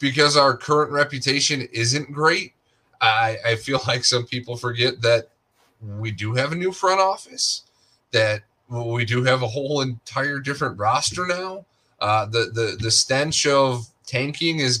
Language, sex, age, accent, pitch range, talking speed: English, male, 20-39, American, 115-145 Hz, 160 wpm